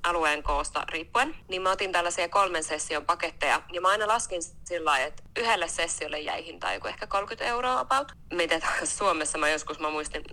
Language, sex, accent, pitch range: Finnish, female, native, 160-185 Hz